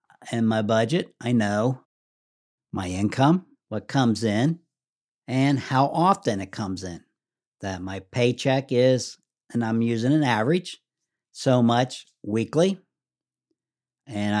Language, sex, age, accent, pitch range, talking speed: English, male, 60-79, American, 110-150 Hz, 120 wpm